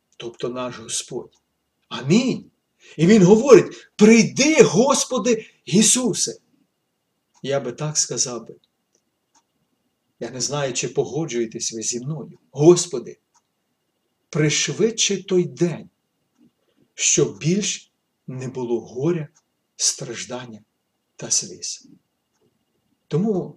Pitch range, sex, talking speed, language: 125-180 Hz, male, 90 wpm, Ukrainian